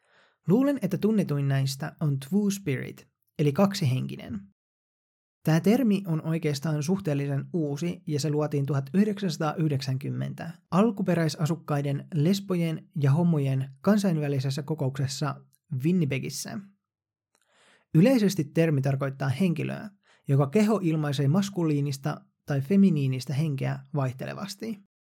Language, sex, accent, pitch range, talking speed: Finnish, male, native, 135-185 Hz, 90 wpm